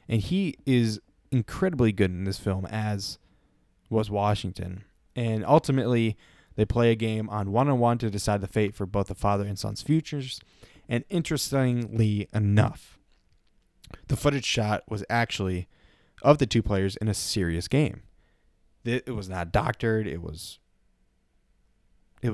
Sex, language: male, English